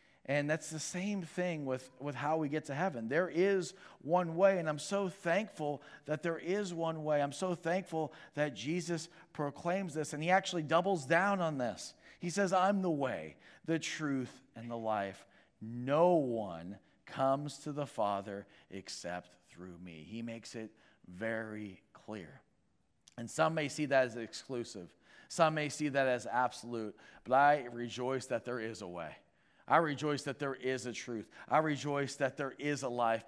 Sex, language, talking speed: male, English, 175 wpm